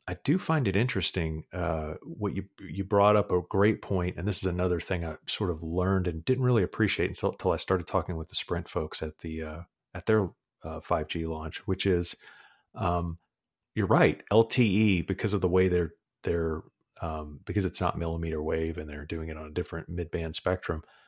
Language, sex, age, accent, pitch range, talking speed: English, male, 30-49, American, 80-95 Hz, 205 wpm